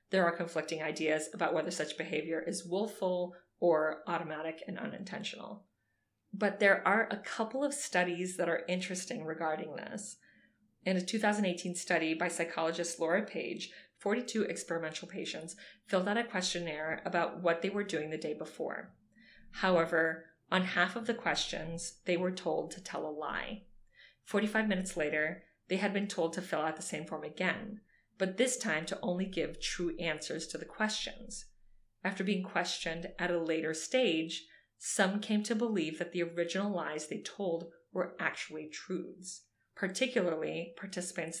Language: English